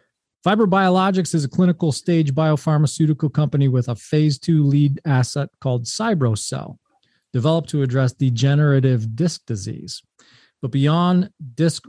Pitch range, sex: 125-155 Hz, male